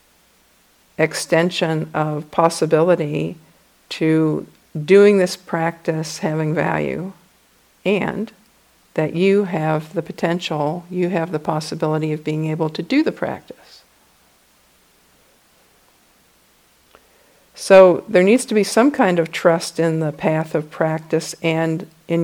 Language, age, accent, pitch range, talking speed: English, 50-69, American, 160-190 Hz, 115 wpm